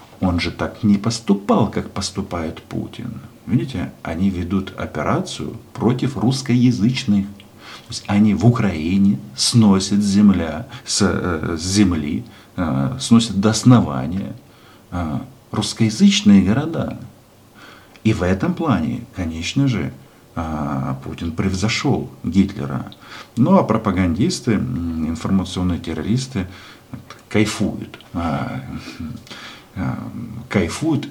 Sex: male